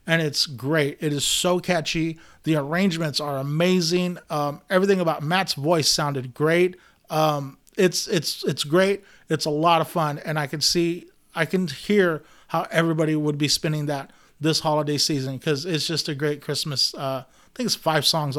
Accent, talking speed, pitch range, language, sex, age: American, 185 wpm, 145-170 Hz, English, male, 30-49